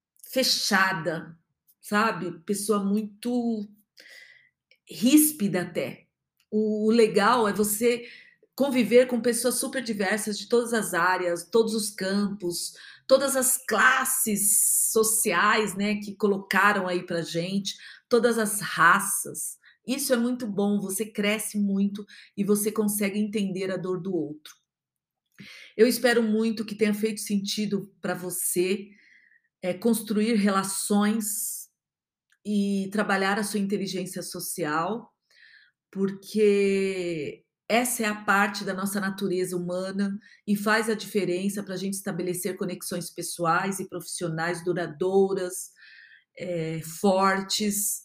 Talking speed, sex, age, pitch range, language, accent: 115 wpm, female, 40-59, 185-220 Hz, Portuguese, Brazilian